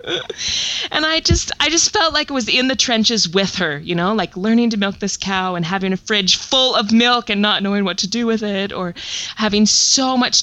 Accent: American